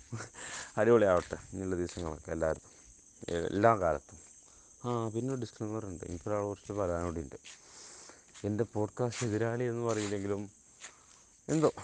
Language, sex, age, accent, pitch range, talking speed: Malayalam, male, 20-39, native, 105-135 Hz, 110 wpm